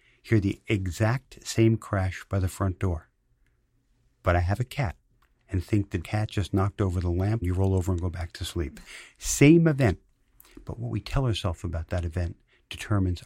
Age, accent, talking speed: 50-69, American, 190 wpm